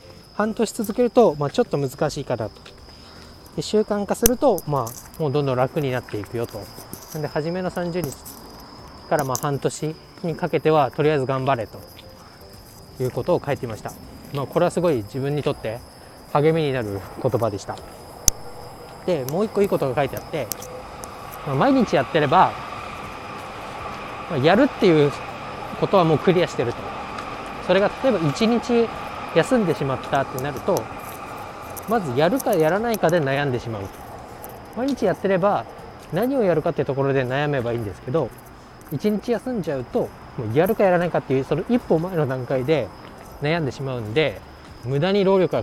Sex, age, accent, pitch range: male, 20-39, native, 125-175 Hz